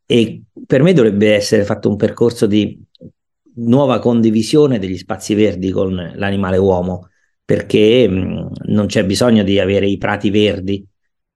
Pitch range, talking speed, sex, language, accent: 95-115 Hz, 135 wpm, male, Italian, native